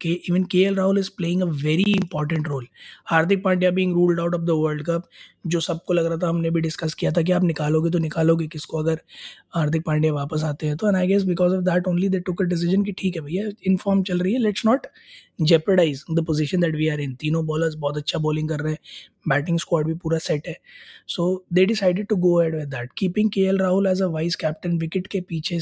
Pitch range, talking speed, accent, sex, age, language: 165-200 Hz, 240 wpm, native, male, 20-39, Hindi